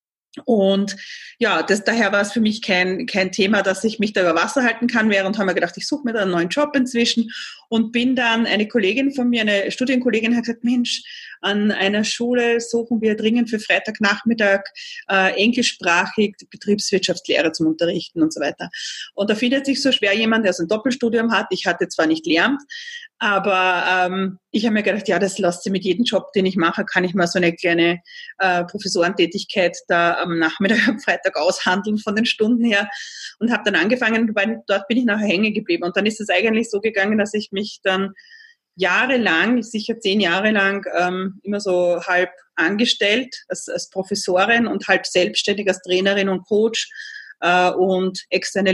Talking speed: 190 wpm